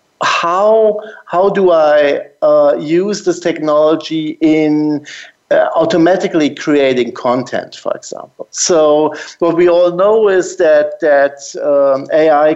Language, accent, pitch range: English, German, 140-180 Hz